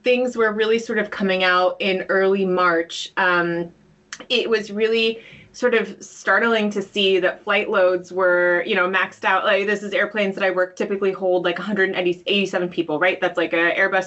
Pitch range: 170-195 Hz